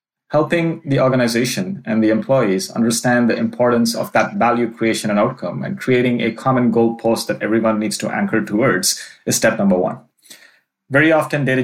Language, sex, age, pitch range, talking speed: English, male, 30-49, 110-125 Hz, 170 wpm